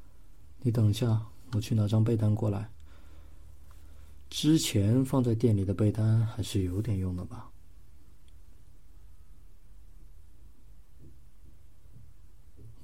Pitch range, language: 90-110 Hz, Chinese